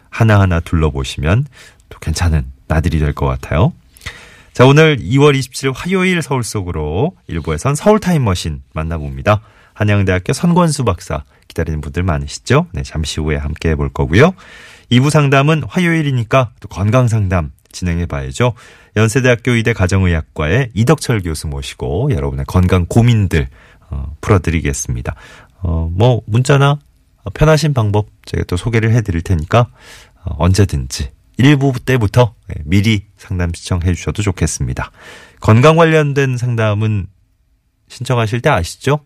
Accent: native